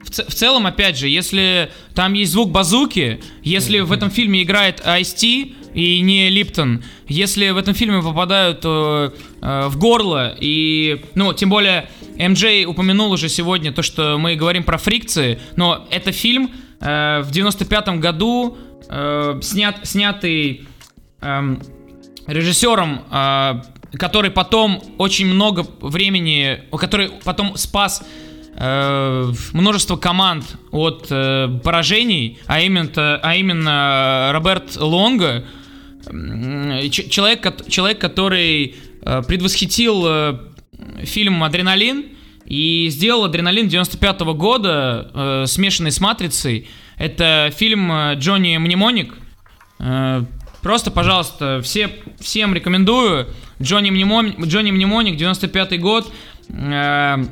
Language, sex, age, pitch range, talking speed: English, male, 20-39, 145-200 Hz, 105 wpm